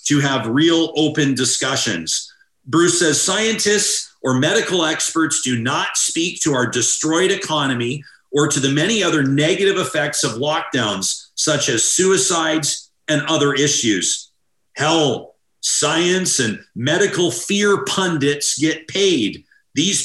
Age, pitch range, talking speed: 50-69, 130-175 Hz, 125 wpm